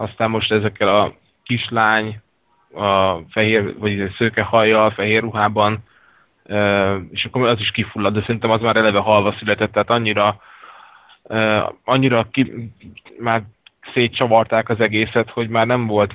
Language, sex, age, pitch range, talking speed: Hungarian, male, 20-39, 100-110 Hz, 130 wpm